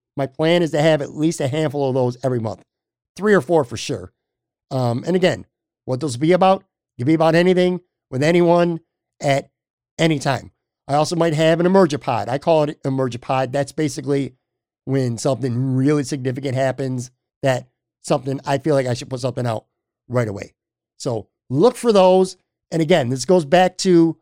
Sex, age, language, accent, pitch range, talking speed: male, 50-69, English, American, 135-175 Hz, 190 wpm